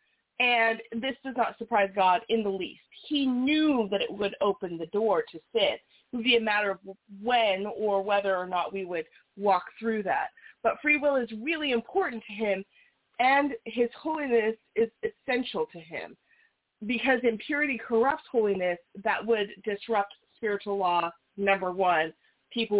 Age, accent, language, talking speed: 30-49, American, English, 165 wpm